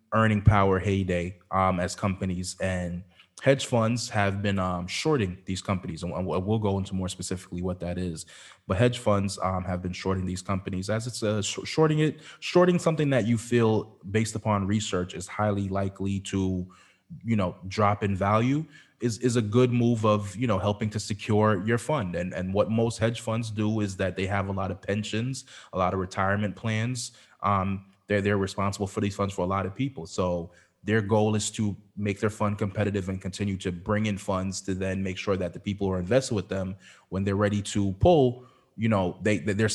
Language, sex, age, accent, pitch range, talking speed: English, male, 20-39, American, 95-110 Hz, 205 wpm